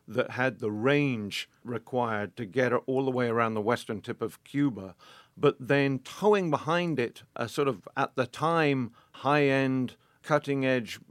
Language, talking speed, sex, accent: English, 155 wpm, male, British